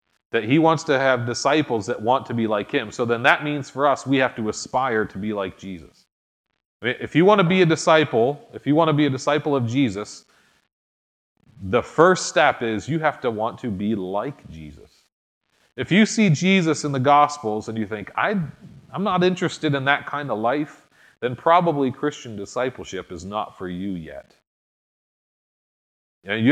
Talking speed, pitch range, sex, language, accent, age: 185 wpm, 110-145 Hz, male, English, American, 30-49